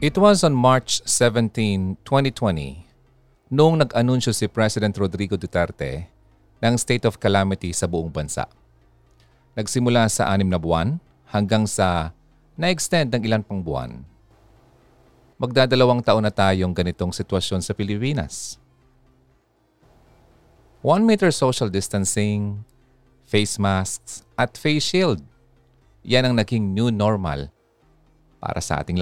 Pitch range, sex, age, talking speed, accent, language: 95-130 Hz, male, 40-59, 115 wpm, native, Filipino